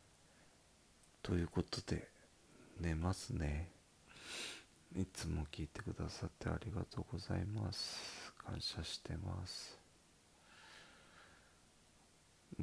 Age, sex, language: 40-59, male, Japanese